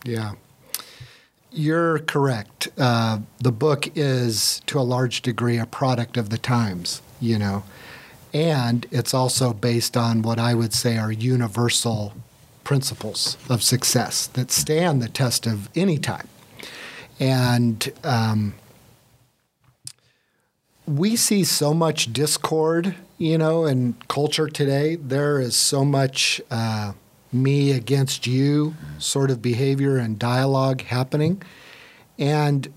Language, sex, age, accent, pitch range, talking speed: English, male, 50-69, American, 120-150 Hz, 115 wpm